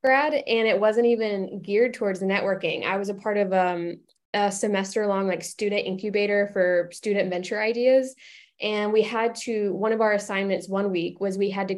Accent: American